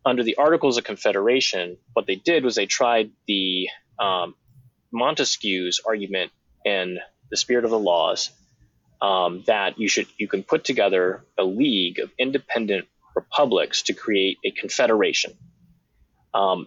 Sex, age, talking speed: male, 20-39, 140 wpm